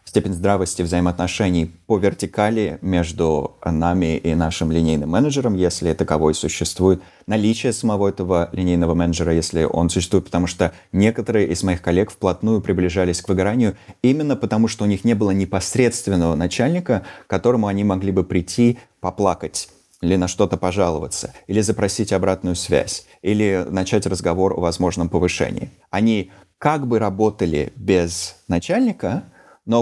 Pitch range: 90-110 Hz